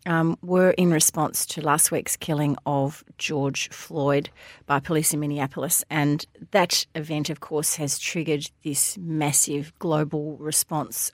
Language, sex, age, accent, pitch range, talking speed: English, female, 40-59, Australian, 150-185 Hz, 140 wpm